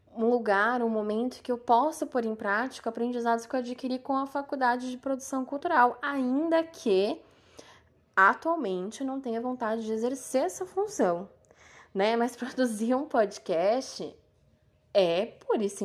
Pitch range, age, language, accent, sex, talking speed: 190-265 Hz, 10-29, Portuguese, Brazilian, female, 150 wpm